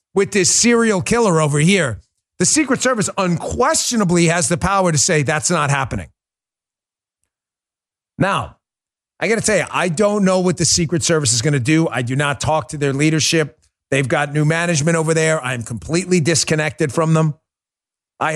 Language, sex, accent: English, male, American